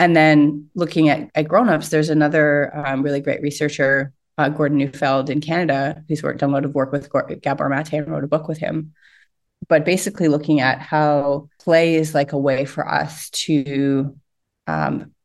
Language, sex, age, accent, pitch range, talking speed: English, female, 30-49, American, 140-155 Hz, 185 wpm